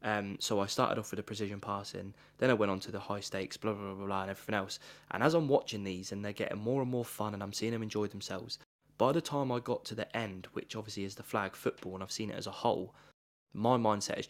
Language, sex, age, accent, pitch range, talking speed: English, male, 20-39, British, 100-115 Hz, 275 wpm